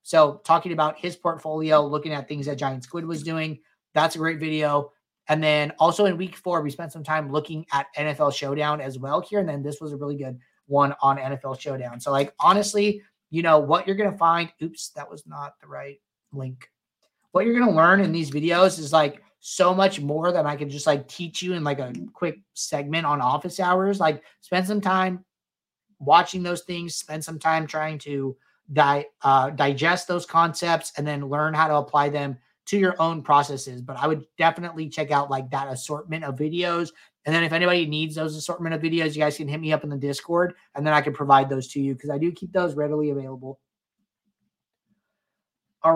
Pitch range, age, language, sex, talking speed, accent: 145-180 Hz, 30-49, English, male, 210 wpm, American